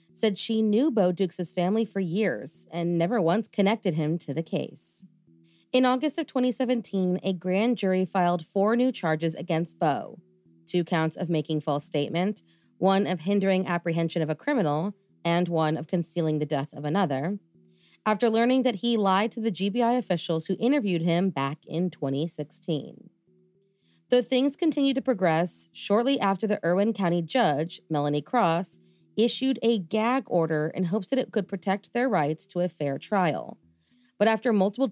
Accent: American